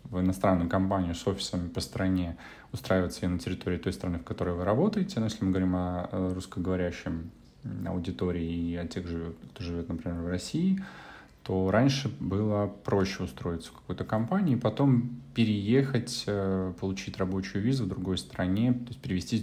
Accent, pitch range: native, 90-115 Hz